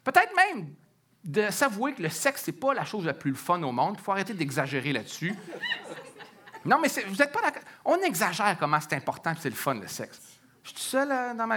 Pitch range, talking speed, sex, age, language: 155-250 Hz, 240 wpm, male, 40-59, French